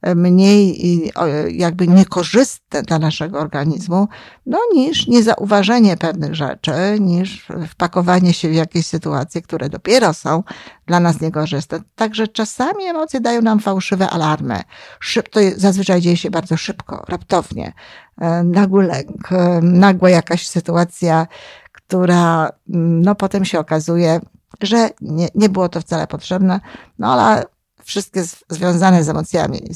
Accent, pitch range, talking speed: native, 165-205 Hz, 125 wpm